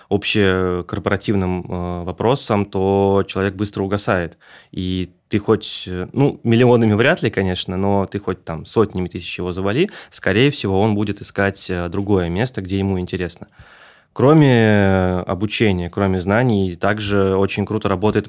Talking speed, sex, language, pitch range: 135 wpm, male, Russian, 95-110 Hz